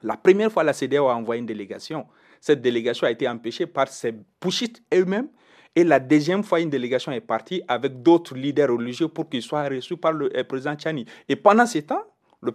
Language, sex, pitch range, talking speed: French, male, 125-180 Hz, 210 wpm